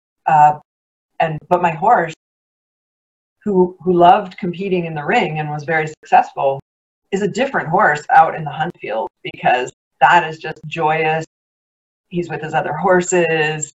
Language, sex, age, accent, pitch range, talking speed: English, female, 40-59, American, 145-180 Hz, 155 wpm